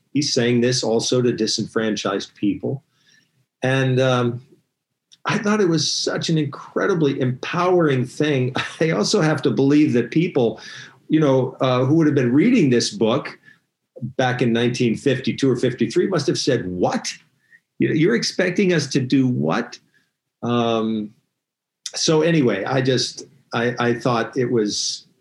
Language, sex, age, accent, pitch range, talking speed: English, male, 50-69, American, 120-155 Hz, 145 wpm